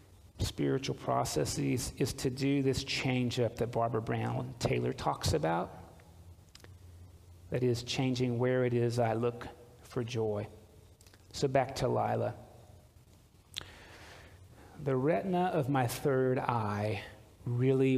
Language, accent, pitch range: English, American, 105-135 Hz